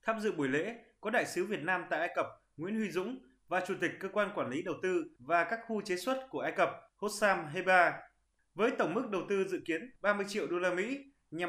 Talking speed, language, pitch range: 245 wpm, Vietnamese, 185-235 Hz